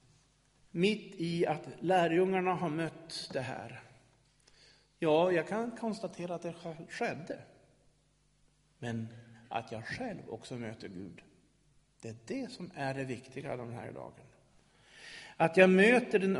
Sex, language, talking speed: male, Swedish, 130 wpm